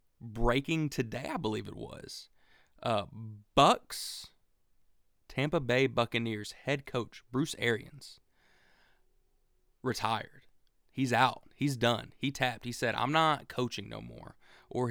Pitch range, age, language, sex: 110-130 Hz, 20-39, English, male